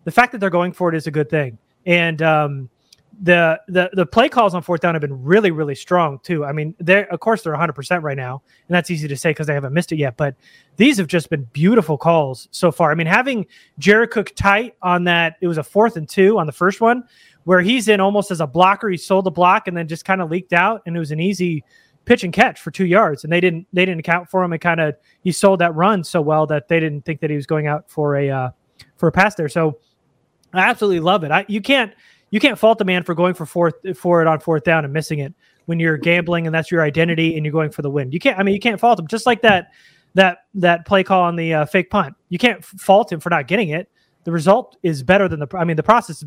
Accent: American